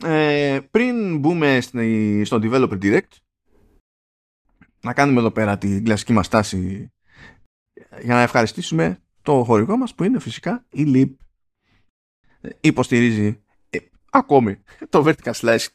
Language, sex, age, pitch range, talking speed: Greek, male, 20-39, 105-150 Hz, 110 wpm